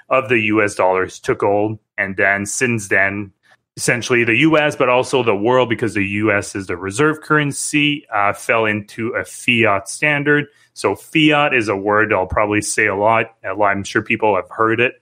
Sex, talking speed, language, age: male, 190 wpm, English, 30-49